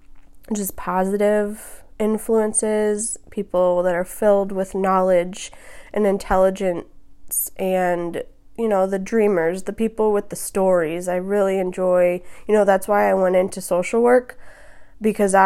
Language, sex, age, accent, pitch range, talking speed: English, female, 20-39, American, 180-210 Hz, 130 wpm